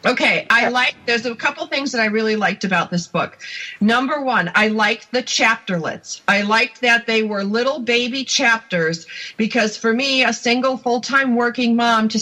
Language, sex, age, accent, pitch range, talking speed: English, female, 40-59, American, 225-270 Hz, 180 wpm